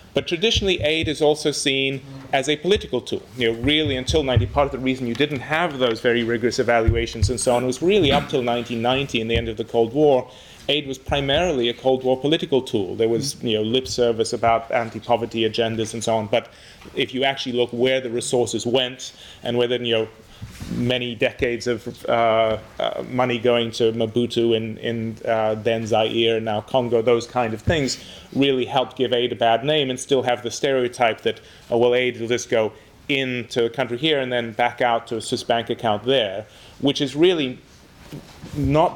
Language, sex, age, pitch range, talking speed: English, male, 30-49, 115-130 Hz, 205 wpm